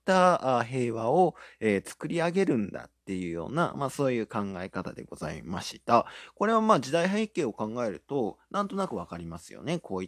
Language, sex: Japanese, male